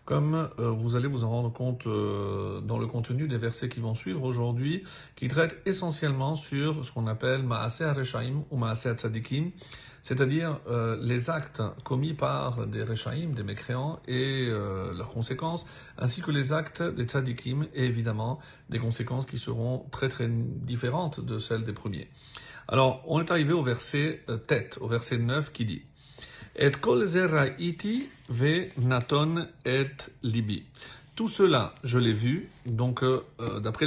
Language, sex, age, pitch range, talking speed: French, male, 50-69, 120-155 Hz, 170 wpm